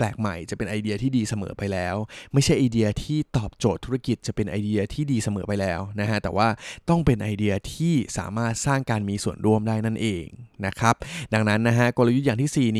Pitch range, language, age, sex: 105-130 Hz, Thai, 20-39, male